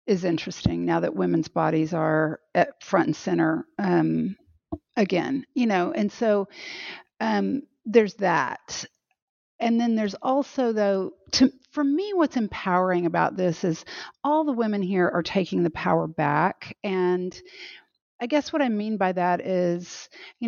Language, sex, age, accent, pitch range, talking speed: English, female, 50-69, American, 175-235 Hz, 150 wpm